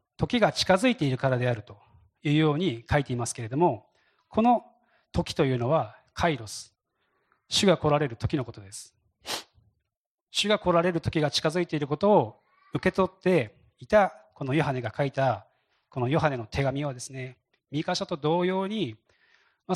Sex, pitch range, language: male, 115-180 Hz, Japanese